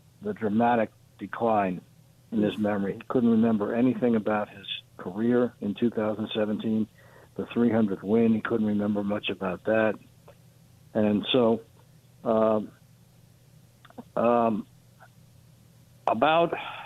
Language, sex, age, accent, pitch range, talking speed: English, male, 60-79, American, 110-130 Hz, 105 wpm